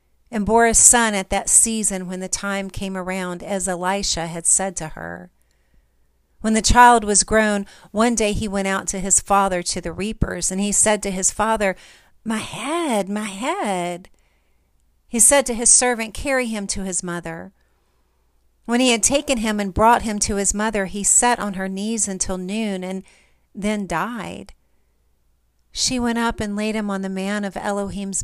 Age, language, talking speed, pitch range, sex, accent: 40-59, English, 185 wpm, 175-215 Hz, female, American